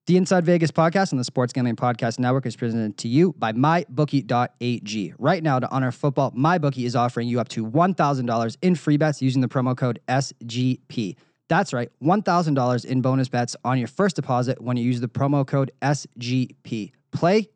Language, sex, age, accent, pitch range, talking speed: English, male, 20-39, American, 125-160 Hz, 185 wpm